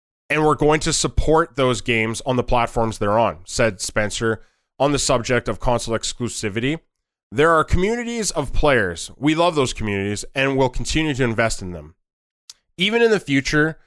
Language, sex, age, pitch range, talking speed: English, male, 20-39, 115-145 Hz, 175 wpm